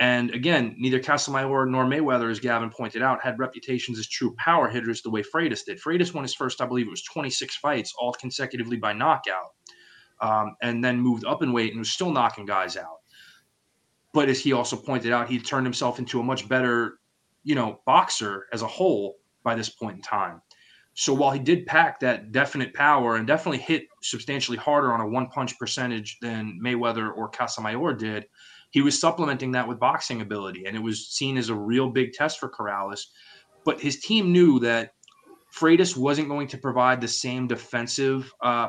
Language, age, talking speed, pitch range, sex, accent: English, 20-39, 195 wpm, 115-135 Hz, male, American